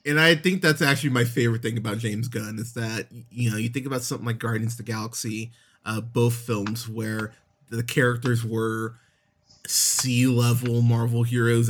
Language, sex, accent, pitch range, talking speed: English, male, American, 115-130 Hz, 175 wpm